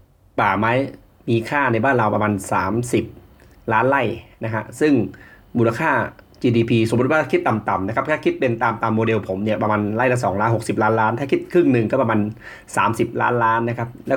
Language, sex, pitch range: Thai, male, 105-130 Hz